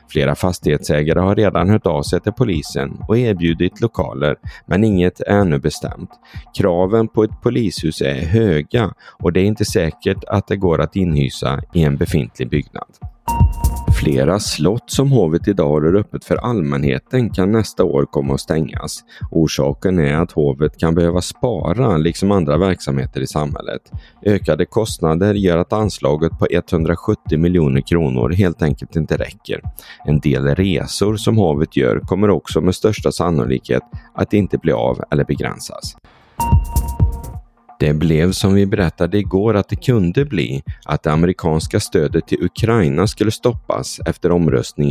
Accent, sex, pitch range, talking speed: native, male, 75-100 Hz, 150 wpm